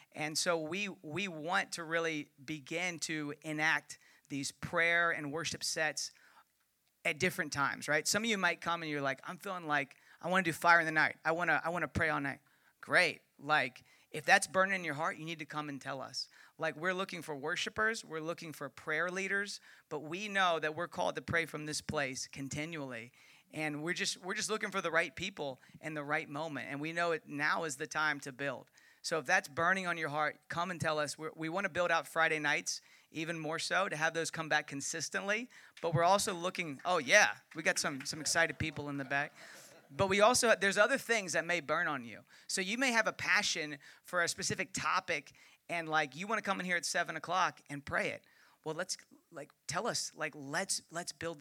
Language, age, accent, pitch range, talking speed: English, 40-59, American, 150-180 Hz, 225 wpm